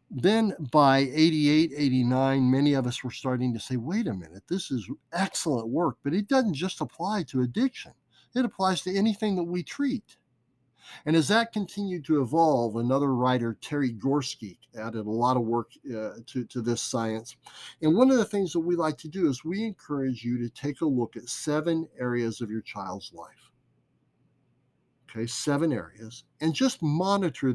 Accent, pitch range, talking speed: American, 120-160 Hz, 180 wpm